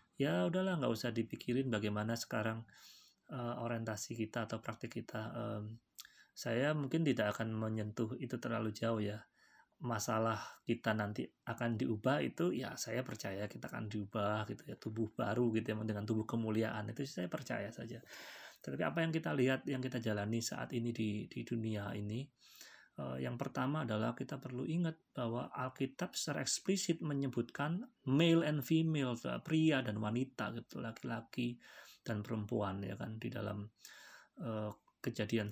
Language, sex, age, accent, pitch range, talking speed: Indonesian, male, 20-39, native, 110-130 Hz, 150 wpm